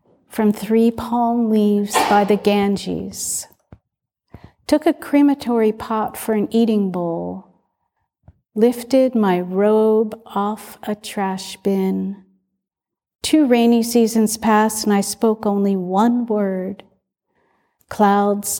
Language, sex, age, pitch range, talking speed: English, female, 50-69, 200-225 Hz, 105 wpm